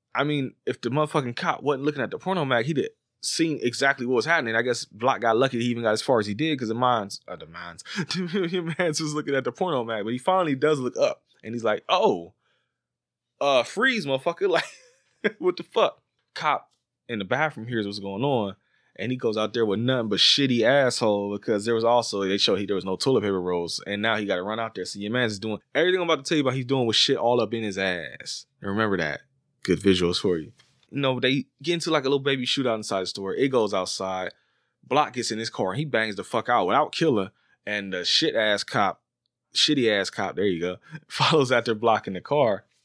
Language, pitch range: English, 105-150 Hz